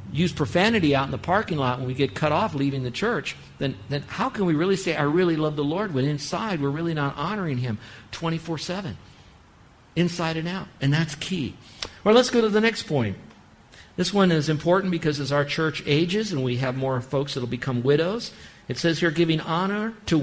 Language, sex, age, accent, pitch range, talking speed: English, male, 50-69, American, 130-175 Hz, 210 wpm